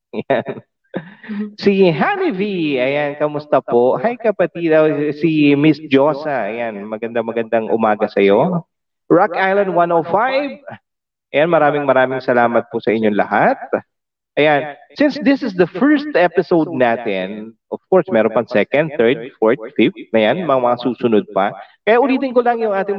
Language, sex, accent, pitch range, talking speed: Filipino, male, native, 130-190 Hz, 135 wpm